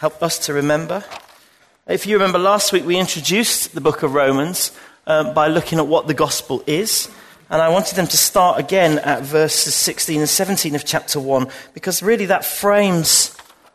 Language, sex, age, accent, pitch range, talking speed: English, male, 40-59, British, 140-175 Hz, 185 wpm